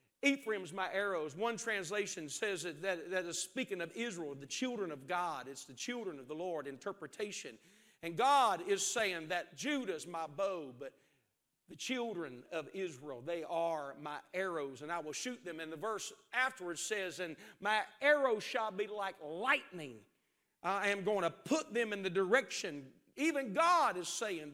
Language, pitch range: English, 185-285 Hz